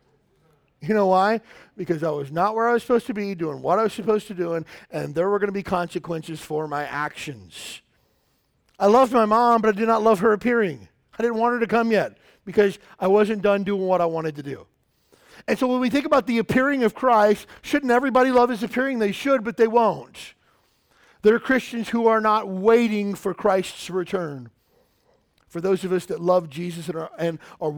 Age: 40-59